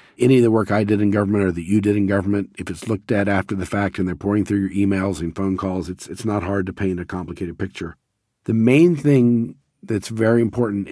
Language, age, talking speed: English, 50-69, 245 wpm